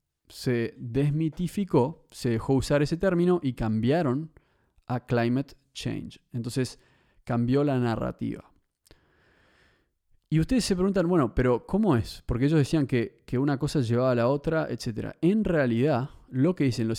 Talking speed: 150 wpm